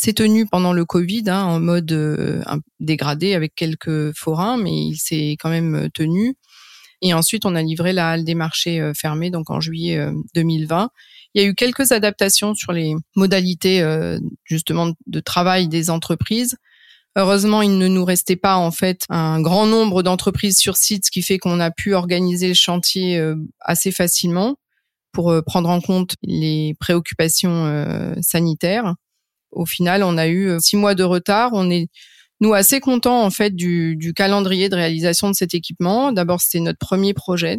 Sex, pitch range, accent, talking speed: female, 165-195 Hz, French, 175 wpm